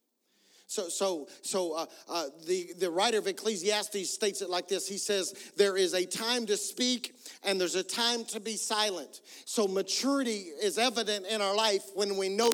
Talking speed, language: 185 wpm, English